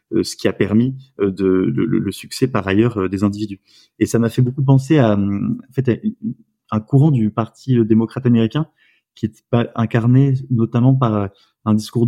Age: 20-39